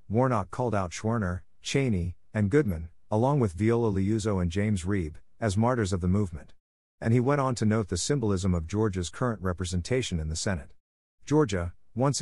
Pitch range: 90-115 Hz